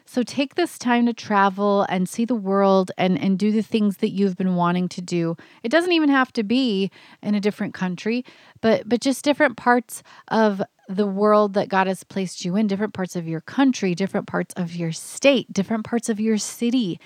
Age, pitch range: 30-49, 180-235 Hz